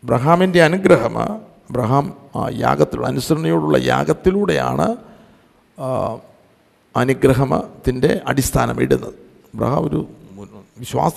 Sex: male